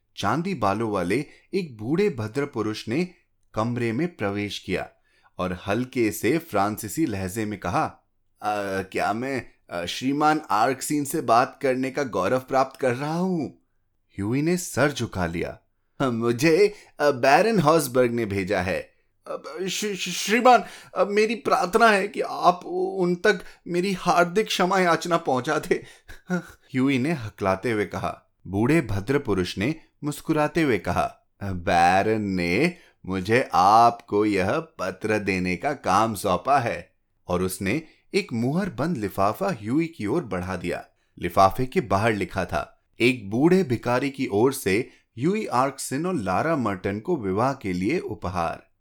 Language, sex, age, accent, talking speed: Hindi, male, 30-49, native, 140 wpm